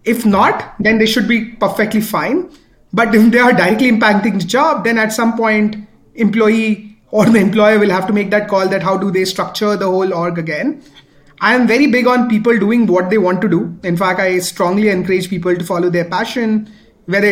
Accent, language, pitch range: Indian, English, 190-235 Hz